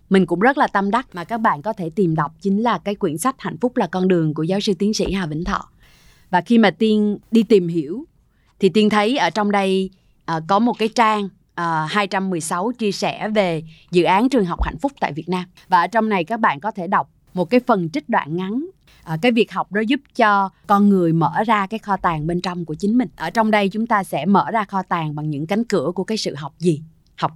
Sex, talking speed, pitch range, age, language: female, 250 wpm, 165-215 Hz, 20-39, Vietnamese